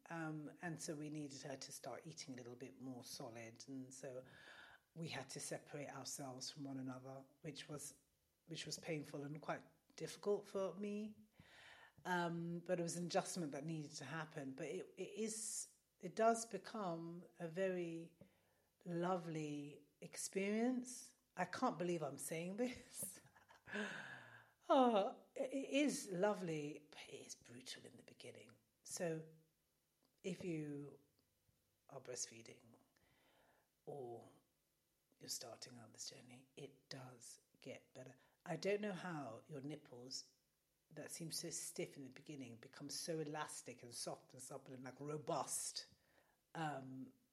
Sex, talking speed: female, 140 wpm